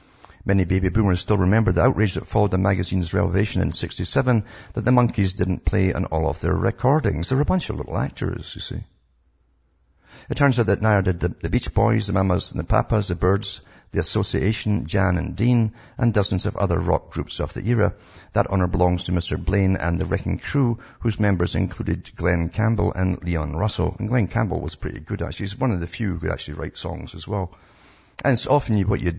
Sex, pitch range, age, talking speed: male, 85-105 Hz, 60-79, 220 wpm